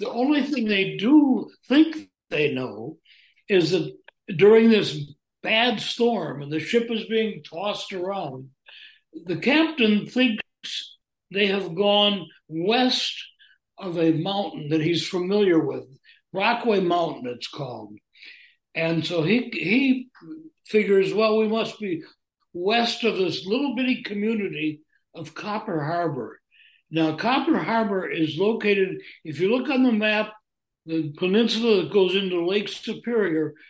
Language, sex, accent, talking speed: English, male, American, 135 wpm